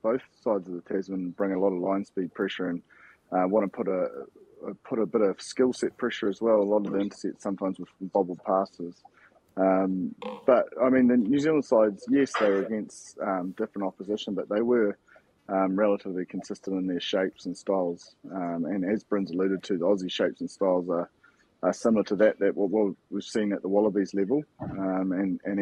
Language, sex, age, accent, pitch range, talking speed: English, male, 20-39, Australian, 90-110 Hz, 210 wpm